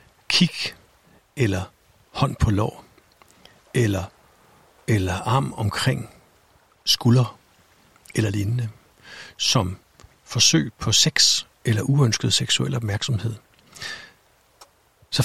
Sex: male